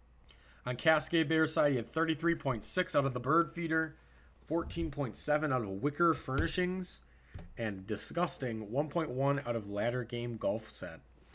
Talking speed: 135 wpm